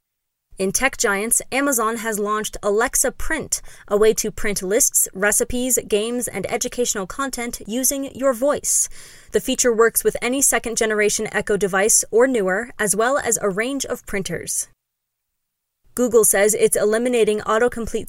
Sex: female